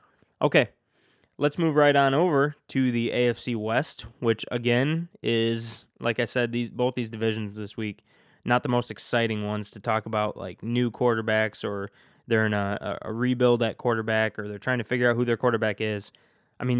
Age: 20-39